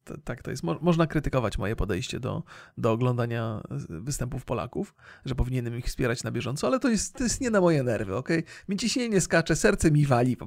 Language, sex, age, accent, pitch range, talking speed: Polish, male, 40-59, native, 125-170 Hz, 205 wpm